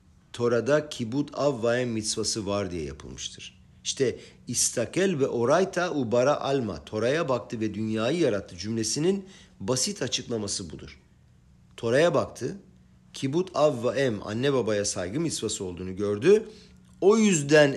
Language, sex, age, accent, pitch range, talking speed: Turkish, male, 50-69, native, 110-160 Hz, 115 wpm